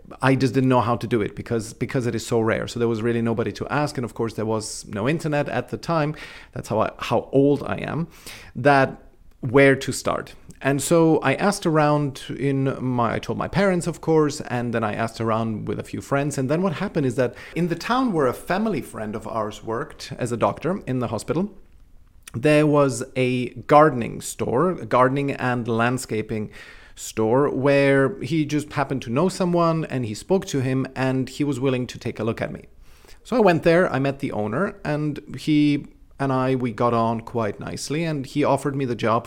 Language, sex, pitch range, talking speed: English, male, 115-150 Hz, 215 wpm